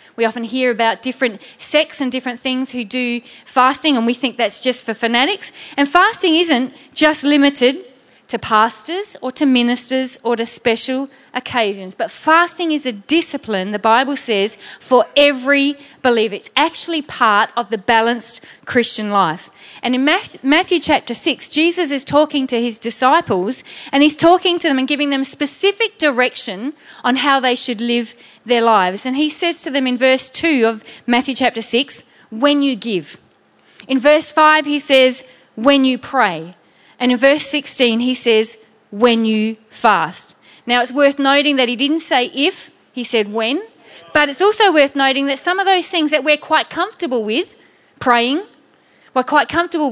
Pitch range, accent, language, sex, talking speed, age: 235-295 Hz, Australian, English, female, 170 wpm, 40-59